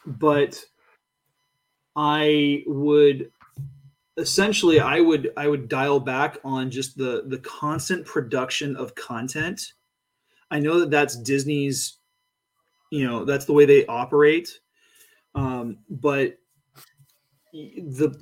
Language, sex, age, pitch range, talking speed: English, male, 20-39, 130-160 Hz, 110 wpm